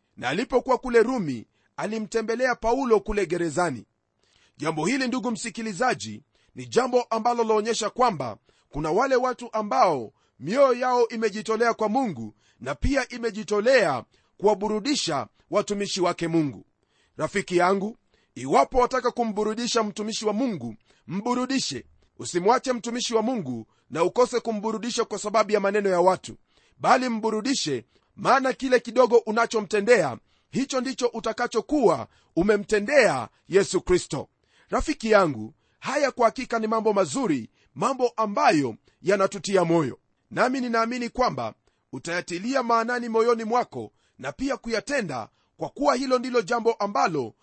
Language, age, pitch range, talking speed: Swahili, 40-59, 190-245 Hz, 120 wpm